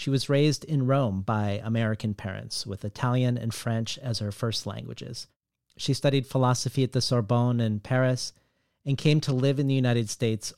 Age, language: 40-59, English